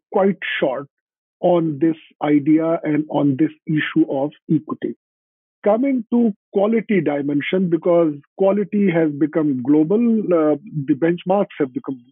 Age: 50-69